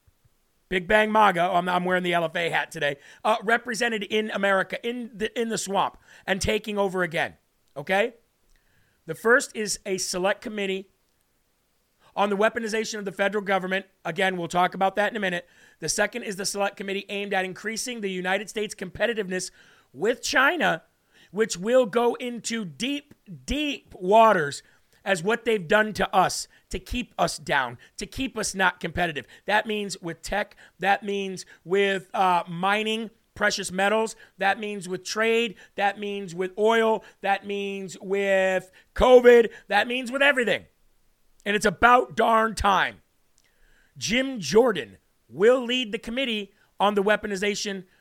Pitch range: 190-225 Hz